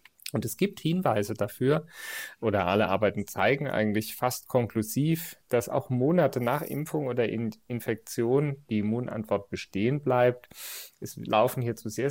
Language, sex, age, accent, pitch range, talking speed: German, male, 30-49, German, 110-135 Hz, 135 wpm